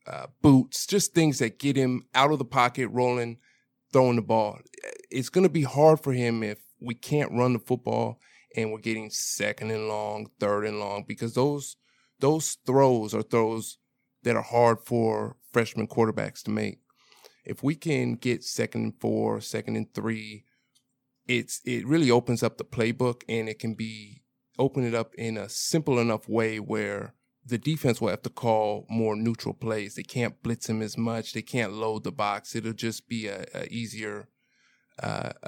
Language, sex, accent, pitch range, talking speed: English, male, American, 110-130 Hz, 180 wpm